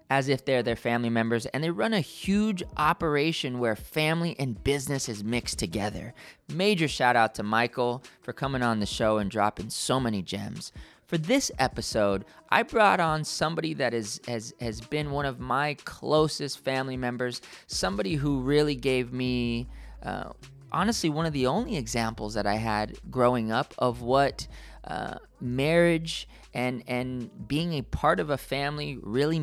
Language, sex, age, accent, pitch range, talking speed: English, male, 20-39, American, 120-160 Hz, 165 wpm